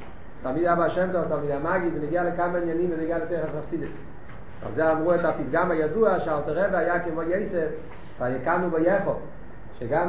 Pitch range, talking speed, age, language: 125-175 Hz, 150 wpm, 40-59, Hebrew